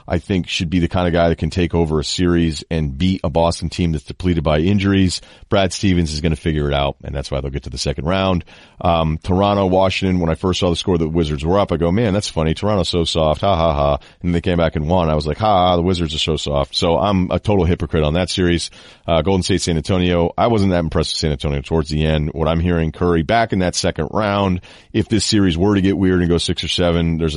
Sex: male